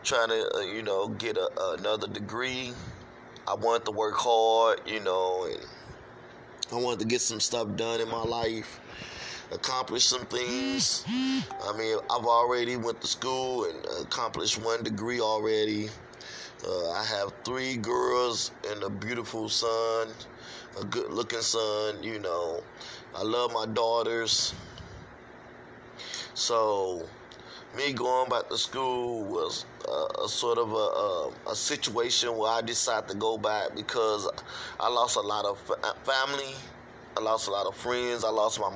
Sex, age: male, 30-49